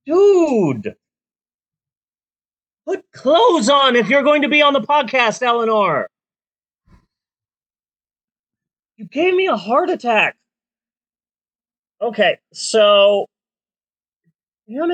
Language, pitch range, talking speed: English, 145-240 Hz, 90 wpm